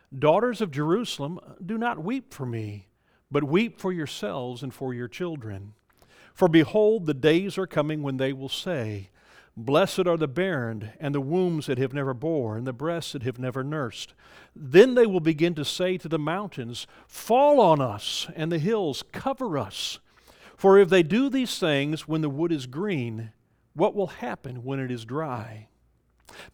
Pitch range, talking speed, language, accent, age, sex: 135-185 Hz, 180 wpm, English, American, 50-69, male